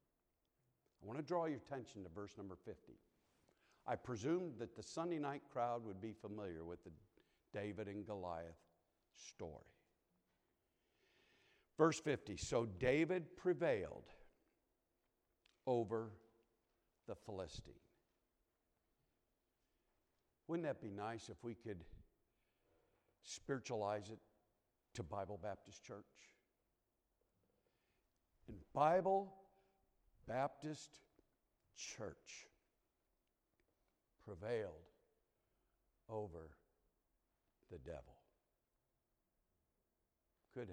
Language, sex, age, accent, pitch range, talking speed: English, male, 60-79, American, 95-135 Hz, 80 wpm